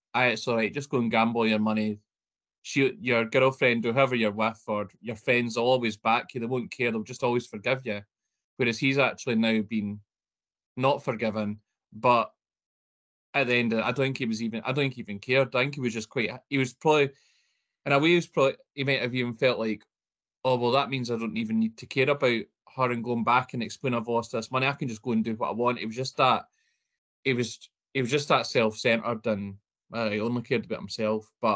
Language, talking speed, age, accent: English, 240 wpm, 20-39, British